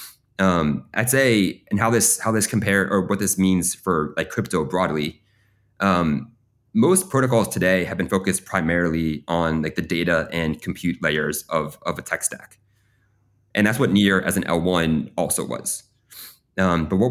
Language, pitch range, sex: English, 80-100 Hz, male